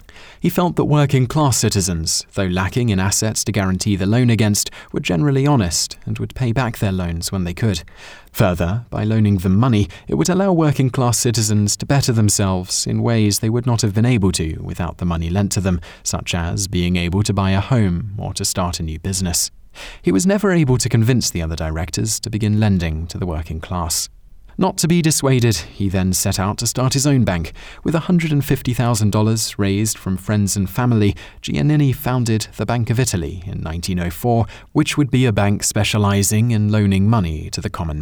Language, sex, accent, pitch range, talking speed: English, male, British, 90-120 Hz, 200 wpm